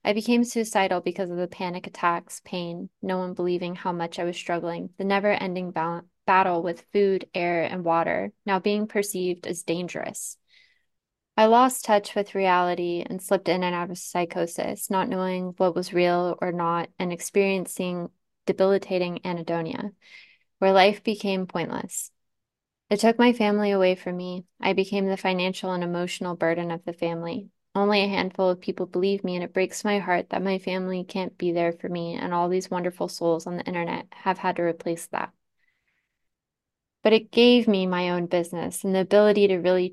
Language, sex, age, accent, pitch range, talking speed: English, female, 20-39, American, 175-200 Hz, 180 wpm